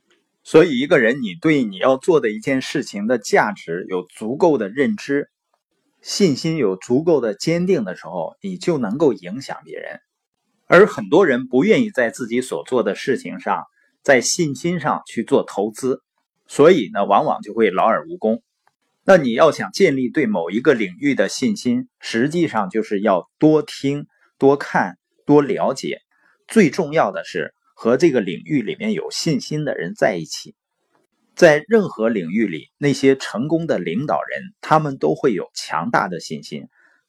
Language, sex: Chinese, male